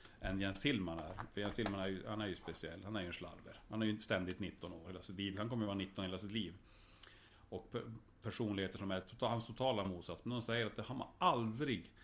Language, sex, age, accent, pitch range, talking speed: Swedish, male, 40-59, Norwegian, 95-115 Hz, 215 wpm